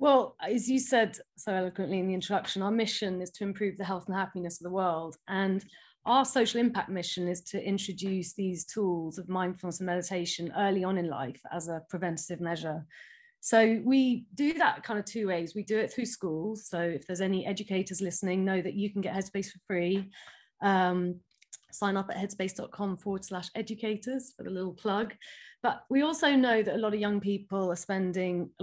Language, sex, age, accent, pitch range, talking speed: English, female, 30-49, British, 180-210 Hz, 195 wpm